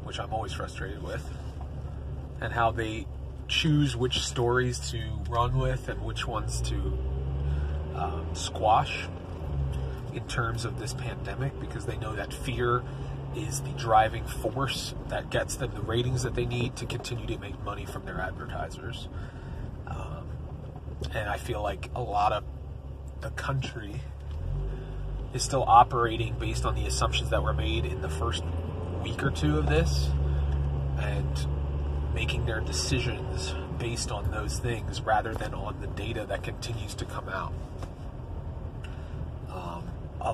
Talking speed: 145 wpm